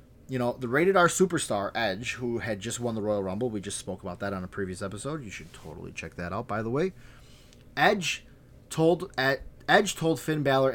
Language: English